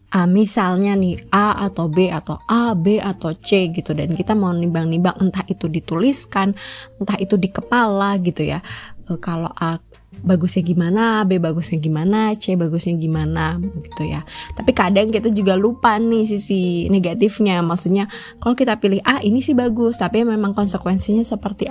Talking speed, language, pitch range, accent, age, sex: 160 wpm, Indonesian, 175-220 Hz, native, 20-39, female